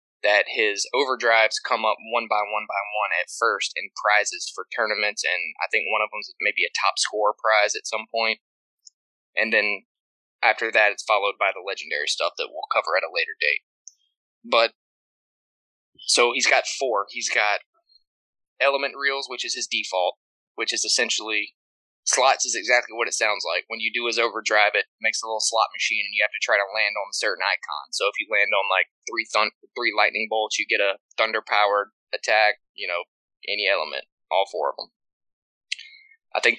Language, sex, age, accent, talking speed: English, male, 10-29, American, 195 wpm